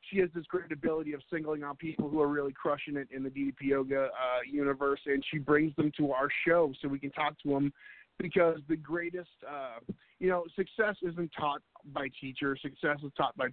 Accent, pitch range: American, 130-160 Hz